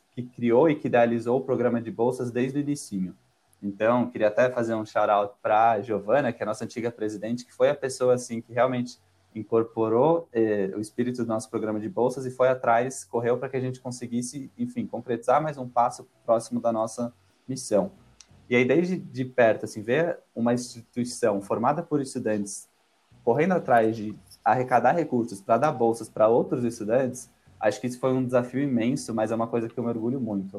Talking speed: 200 wpm